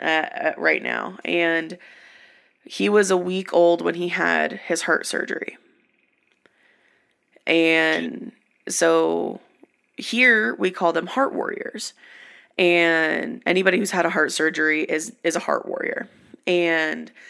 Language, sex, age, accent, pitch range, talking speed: English, female, 20-39, American, 160-195 Hz, 125 wpm